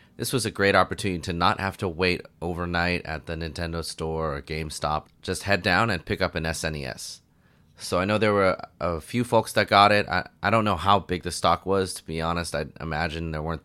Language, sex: English, male